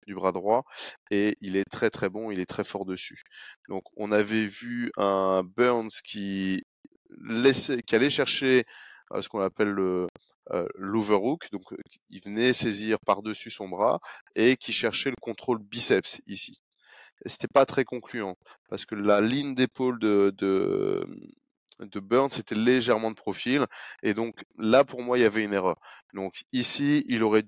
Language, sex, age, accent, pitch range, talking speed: French, male, 20-39, French, 100-125 Hz, 170 wpm